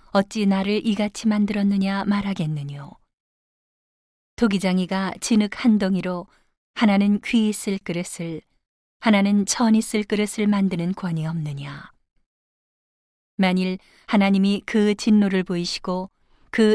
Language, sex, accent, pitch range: Korean, female, native, 185-210 Hz